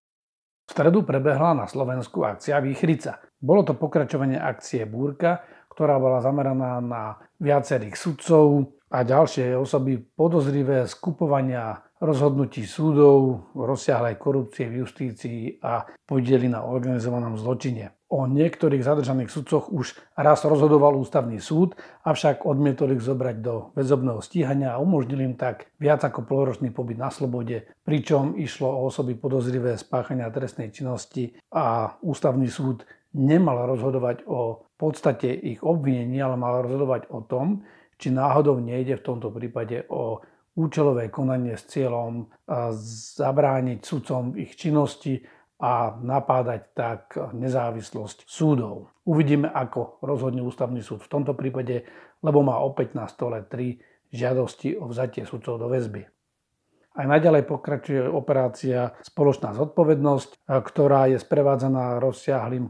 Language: Slovak